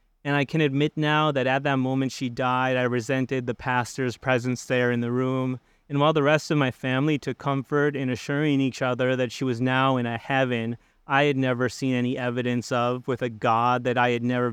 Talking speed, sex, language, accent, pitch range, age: 225 wpm, male, English, American, 125-140 Hz, 30-49